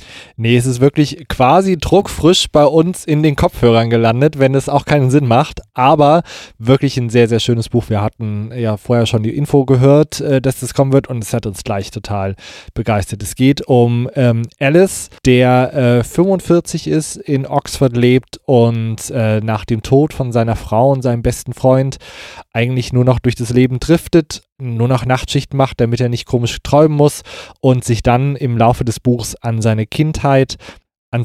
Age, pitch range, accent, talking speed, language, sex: 20-39, 115-140 Hz, German, 180 wpm, German, male